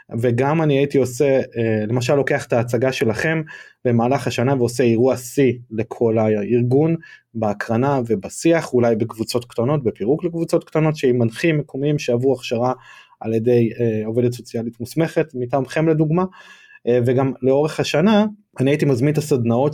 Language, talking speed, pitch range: Hebrew, 135 wpm, 120-150 Hz